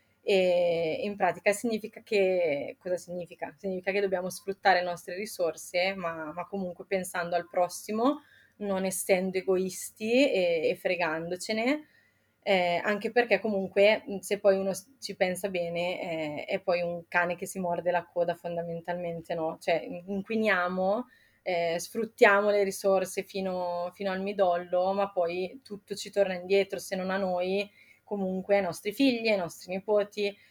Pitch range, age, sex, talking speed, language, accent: 180-220 Hz, 20-39, female, 150 wpm, Italian, native